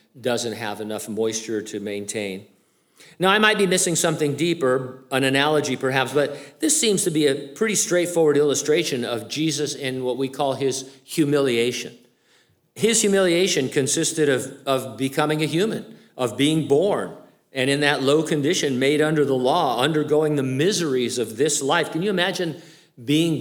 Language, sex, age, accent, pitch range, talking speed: English, male, 50-69, American, 125-160 Hz, 160 wpm